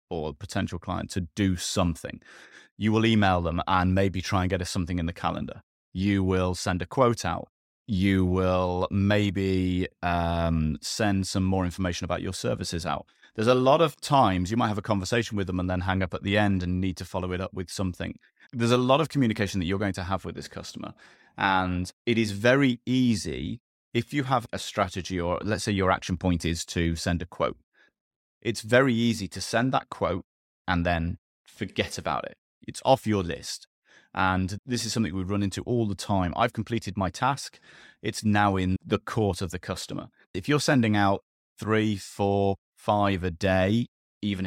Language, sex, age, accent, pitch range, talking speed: English, male, 30-49, British, 90-110 Hz, 200 wpm